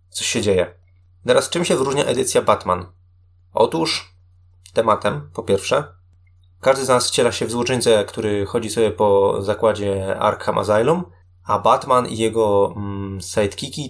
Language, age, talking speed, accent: Polish, 20-39, 140 wpm, native